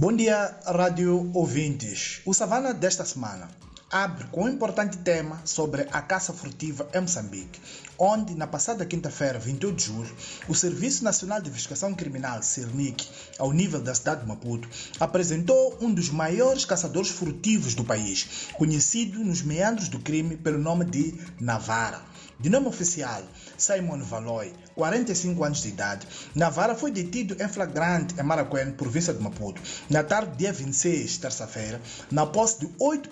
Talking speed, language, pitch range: 150 wpm, Portuguese, 140-190 Hz